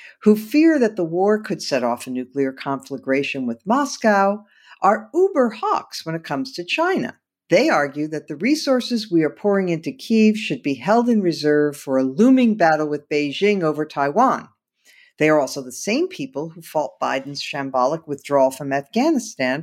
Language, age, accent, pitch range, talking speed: English, 50-69, American, 140-185 Hz, 170 wpm